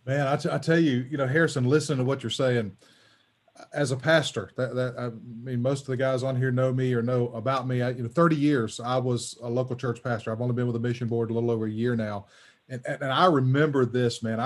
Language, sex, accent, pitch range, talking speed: English, male, American, 125-155 Hz, 265 wpm